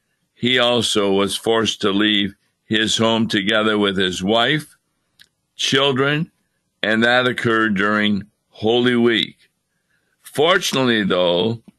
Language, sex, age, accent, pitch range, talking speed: English, male, 60-79, American, 105-130 Hz, 105 wpm